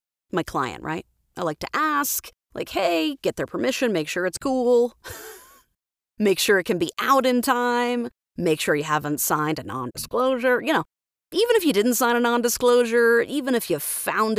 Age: 30-49